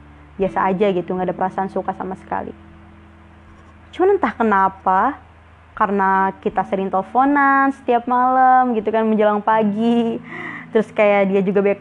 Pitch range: 195-230 Hz